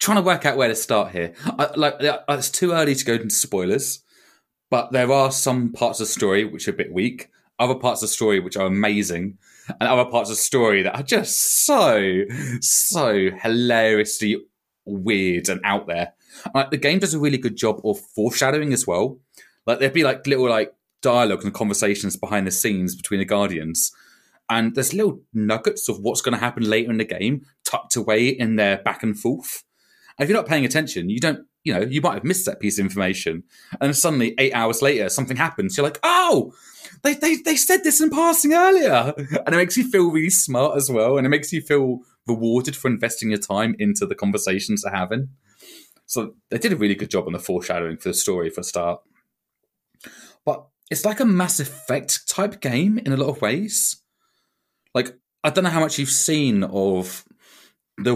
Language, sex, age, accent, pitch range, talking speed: English, male, 20-39, British, 105-160 Hz, 205 wpm